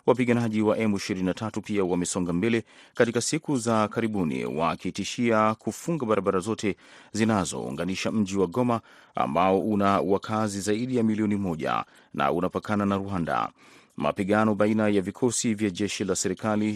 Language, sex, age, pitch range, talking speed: Swahili, male, 40-59, 95-115 Hz, 135 wpm